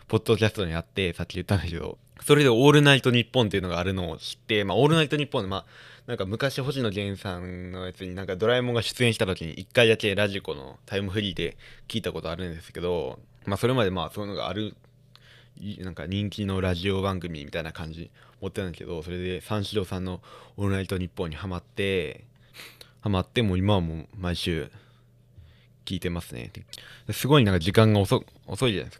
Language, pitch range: Japanese, 90-120 Hz